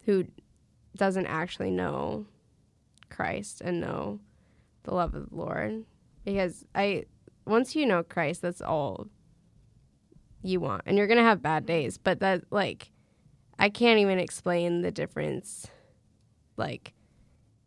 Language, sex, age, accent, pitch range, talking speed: English, female, 10-29, American, 180-200 Hz, 130 wpm